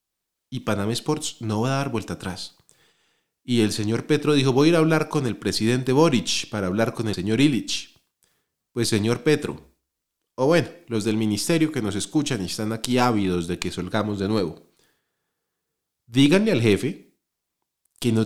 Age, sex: 30-49, male